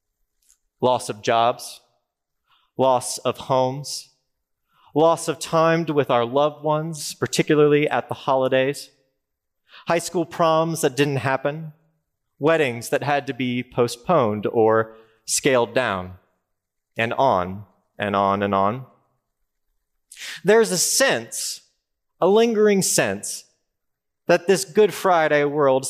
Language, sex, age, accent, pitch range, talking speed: English, male, 30-49, American, 110-165 Hz, 115 wpm